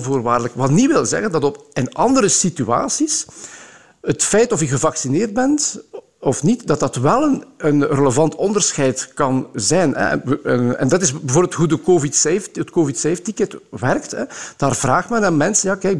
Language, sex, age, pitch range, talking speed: Dutch, male, 50-69, 145-190 Hz, 185 wpm